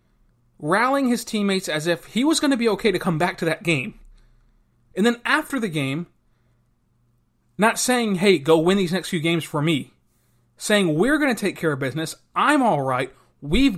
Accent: American